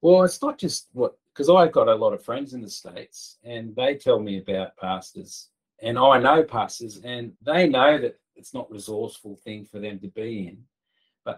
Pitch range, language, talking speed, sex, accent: 120-180 Hz, English, 210 wpm, male, Australian